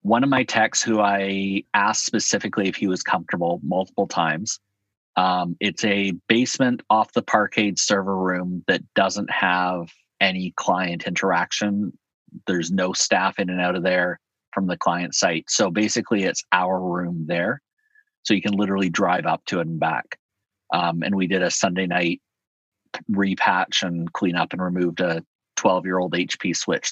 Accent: American